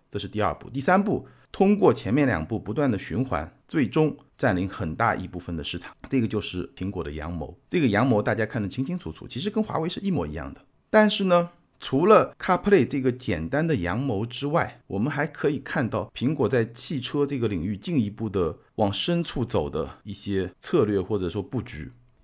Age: 50-69